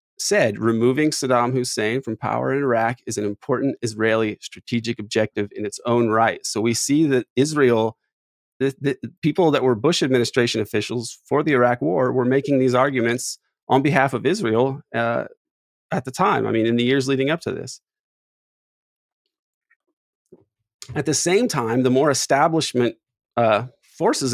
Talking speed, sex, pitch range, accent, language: 160 wpm, male, 115-135 Hz, American, English